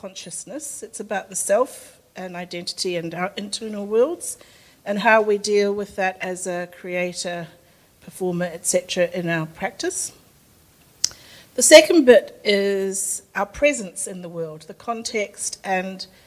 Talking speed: 135 wpm